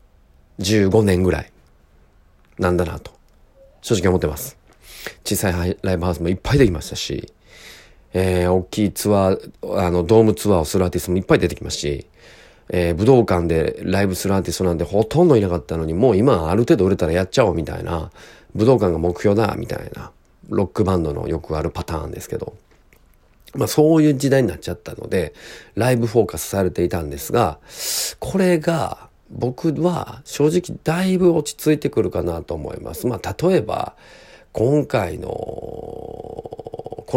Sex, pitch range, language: male, 85-115 Hz, Japanese